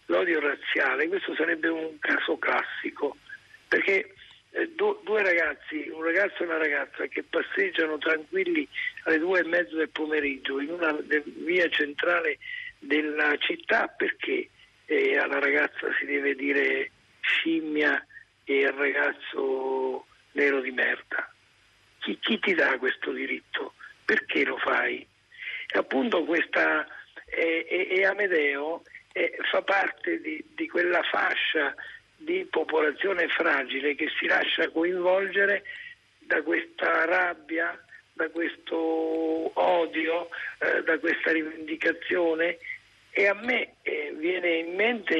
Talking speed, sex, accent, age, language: 120 wpm, male, native, 50-69, Italian